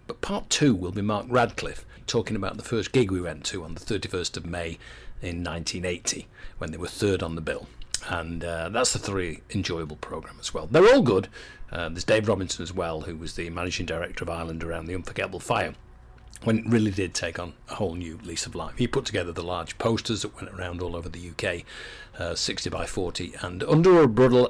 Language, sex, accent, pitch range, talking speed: English, male, British, 85-130 Hz, 225 wpm